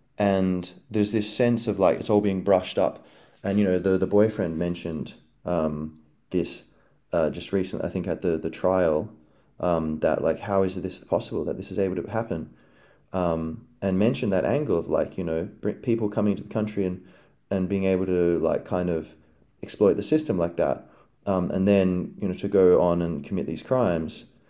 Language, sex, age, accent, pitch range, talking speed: English, male, 20-39, Australian, 85-100 Hz, 200 wpm